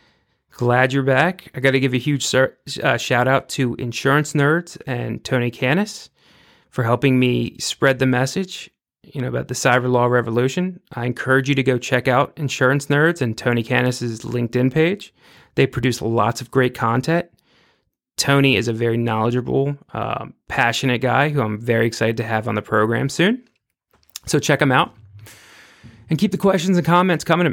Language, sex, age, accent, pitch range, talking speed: English, male, 30-49, American, 120-145 Hz, 180 wpm